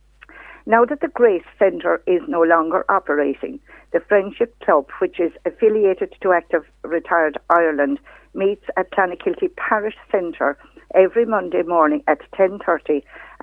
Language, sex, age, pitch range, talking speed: English, female, 60-79, 160-255 Hz, 130 wpm